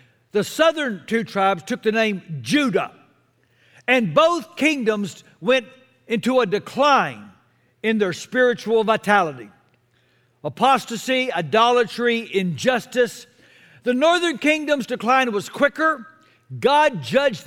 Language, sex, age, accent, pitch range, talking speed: English, male, 60-79, American, 200-270 Hz, 105 wpm